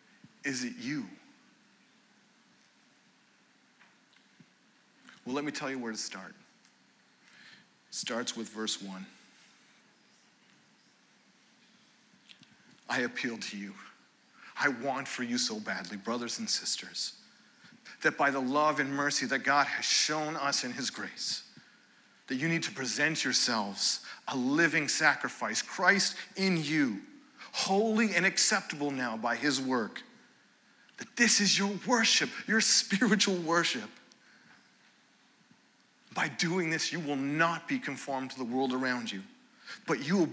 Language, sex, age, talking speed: English, male, 40-59, 130 wpm